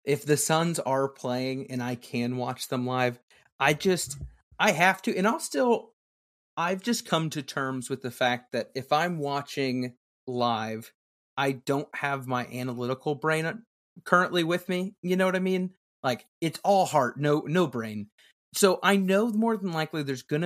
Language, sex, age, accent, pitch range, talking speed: English, male, 30-49, American, 130-175 Hz, 180 wpm